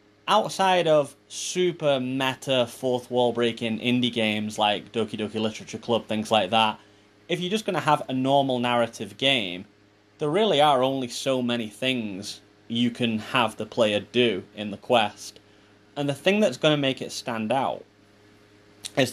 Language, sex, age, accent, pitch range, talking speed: English, male, 20-39, British, 105-130 Hz, 170 wpm